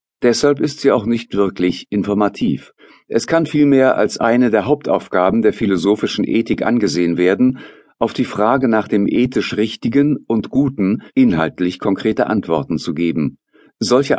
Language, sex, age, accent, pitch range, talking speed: German, male, 50-69, German, 95-120 Hz, 145 wpm